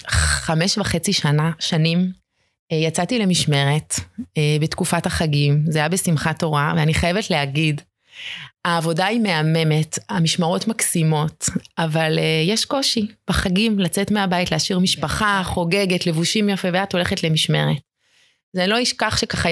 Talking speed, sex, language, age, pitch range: 115 wpm, female, Hebrew, 30-49, 160-205 Hz